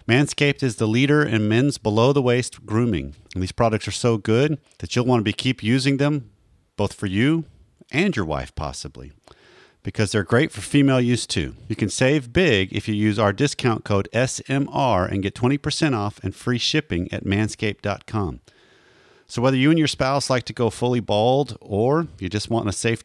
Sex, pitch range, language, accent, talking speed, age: male, 95-125 Hz, English, American, 190 wpm, 40-59